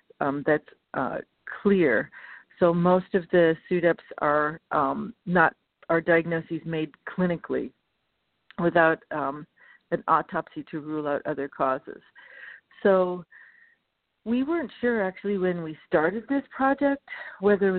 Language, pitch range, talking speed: English, 165-205 Hz, 120 wpm